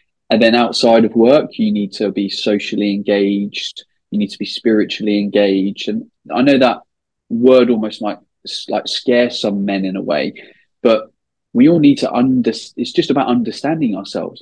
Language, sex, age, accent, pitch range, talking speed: English, male, 20-39, British, 105-130 Hz, 175 wpm